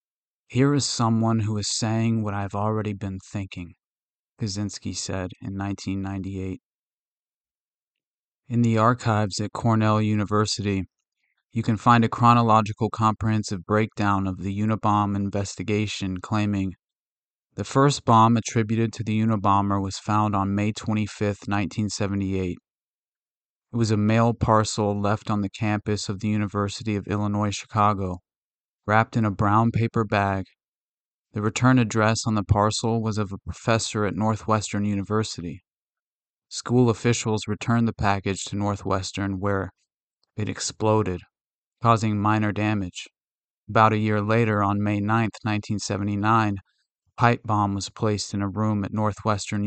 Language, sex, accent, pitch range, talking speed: English, male, American, 100-110 Hz, 135 wpm